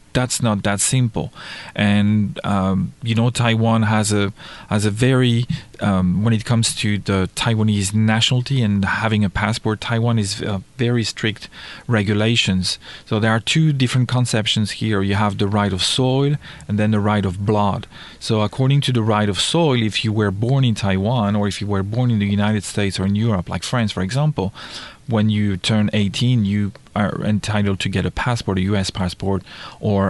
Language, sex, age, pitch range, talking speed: English, male, 40-59, 100-120 Hz, 190 wpm